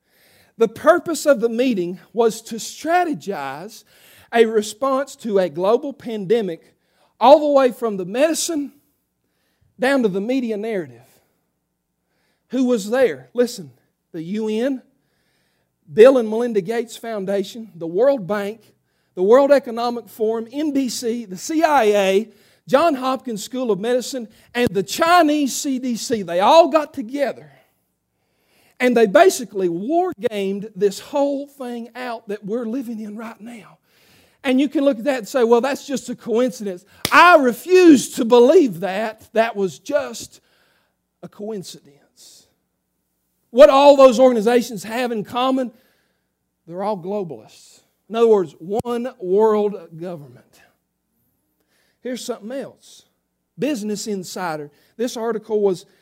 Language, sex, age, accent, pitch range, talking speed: English, male, 40-59, American, 200-260 Hz, 130 wpm